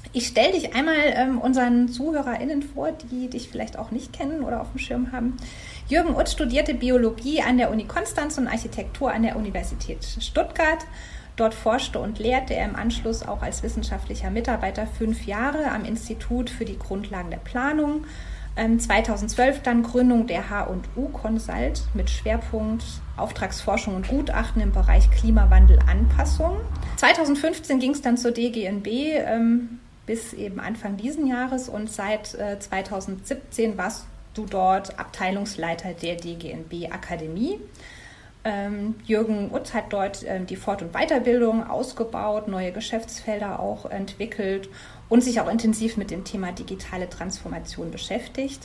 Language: German